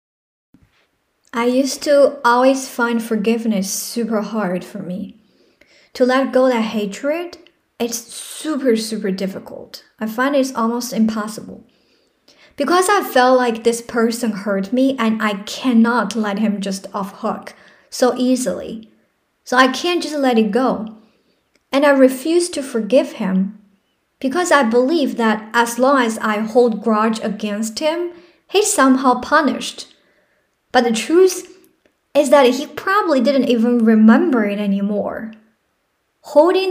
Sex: male